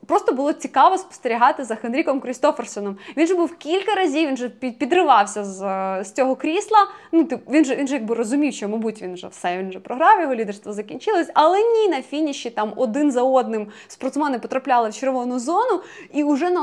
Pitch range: 230-305 Hz